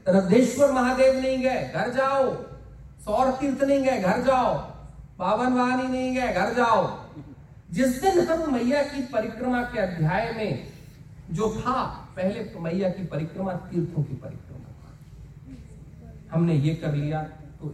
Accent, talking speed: native, 140 wpm